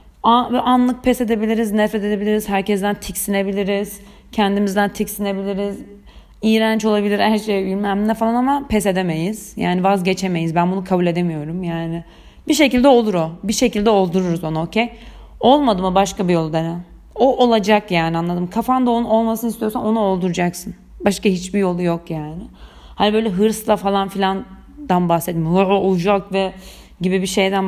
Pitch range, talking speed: 180-220 Hz, 145 wpm